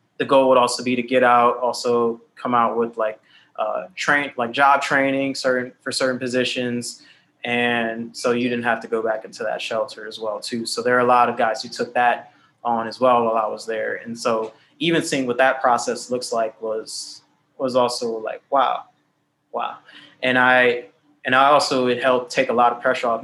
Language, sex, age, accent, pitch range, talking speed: English, male, 20-39, American, 115-140 Hz, 210 wpm